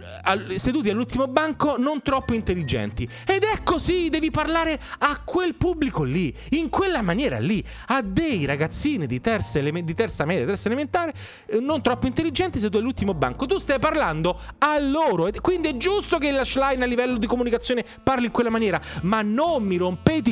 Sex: male